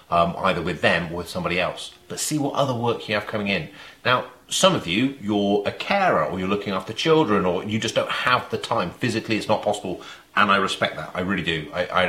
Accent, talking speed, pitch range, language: British, 240 wpm, 95-125 Hz, English